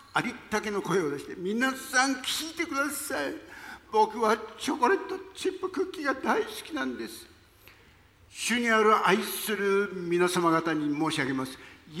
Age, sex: 60-79, male